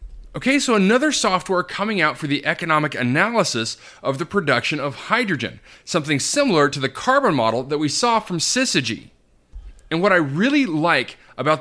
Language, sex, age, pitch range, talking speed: English, male, 30-49, 135-200 Hz, 165 wpm